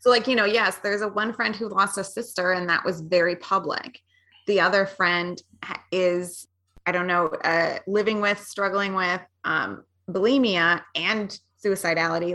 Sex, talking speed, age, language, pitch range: female, 165 wpm, 20-39, English, 175-210 Hz